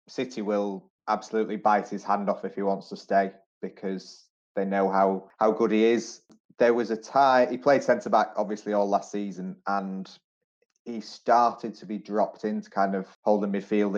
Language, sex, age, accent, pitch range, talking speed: English, male, 20-39, British, 100-110 Hz, 180 wpm